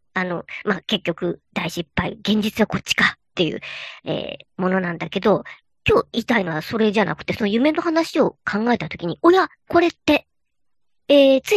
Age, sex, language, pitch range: 50-69, male, Japanese, 195-295 Hz